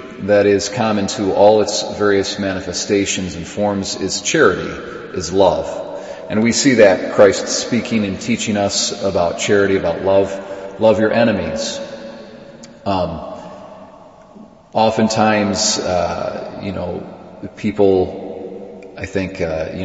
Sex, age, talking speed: male, 40-59, 120 wpm